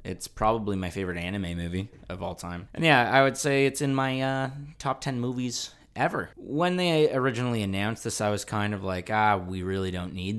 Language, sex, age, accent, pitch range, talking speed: English, male, 20-39, American, 90-125 Hz, 215 wpm